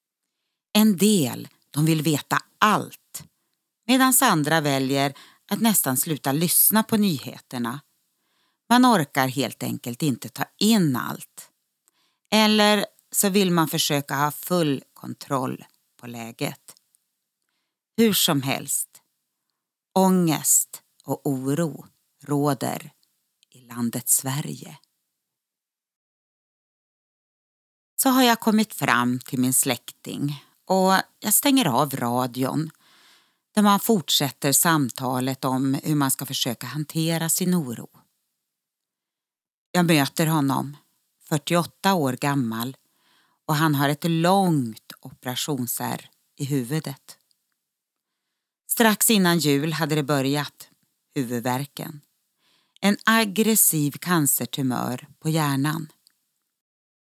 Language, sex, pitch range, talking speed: Swedish, female, 135-185 Hz, 100 wpm